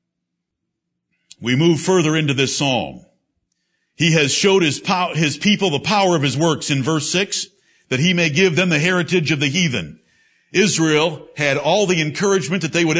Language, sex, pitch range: English, male, 155-200 Hz